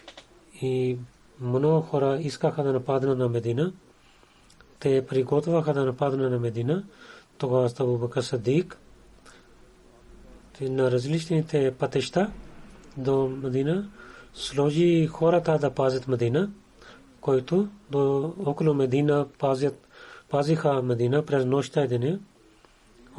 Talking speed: 95 wpm